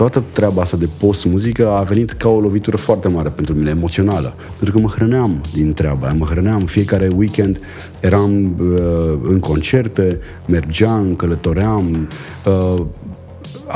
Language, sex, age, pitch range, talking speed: Romanian, male, 30-49, 90-120 Hz, 140 wpm